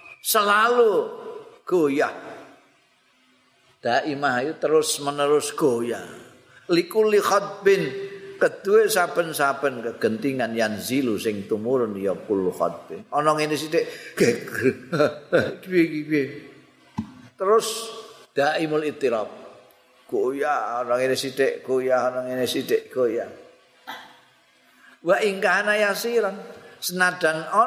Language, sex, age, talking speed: Indonesian, male, 50-69, 100 wpm